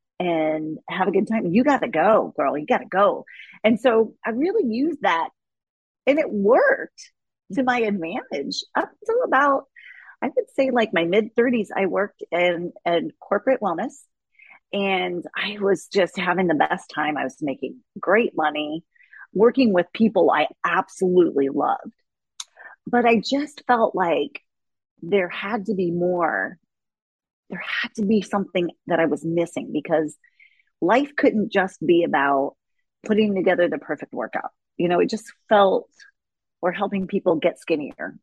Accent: American